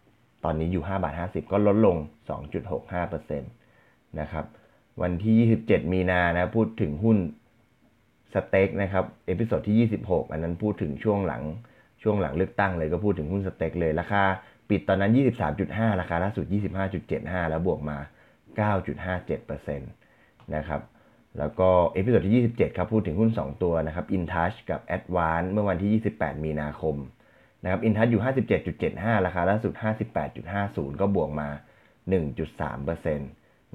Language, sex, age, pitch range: Thai, male, 20-39, 80-105 Hz